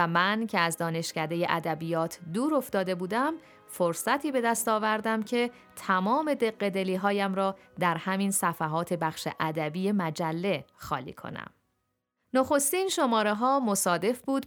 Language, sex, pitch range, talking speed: Persian, female, 170-215 Hz, 130 wpm